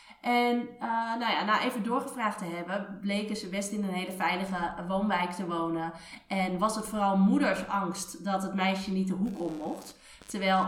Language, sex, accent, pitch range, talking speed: Dutch, female, Dutch, 180-230 Hz, 185 wpm